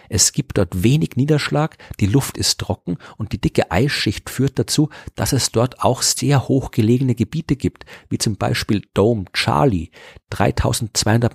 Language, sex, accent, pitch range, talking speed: German, male, German, 95-120 Hz, 155 wpm